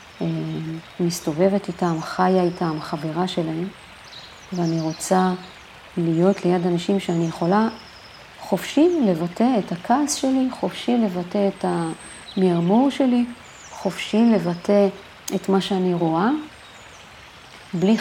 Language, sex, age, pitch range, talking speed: Hebrew, female, 40-59, 175-220 Hz, 100 wpm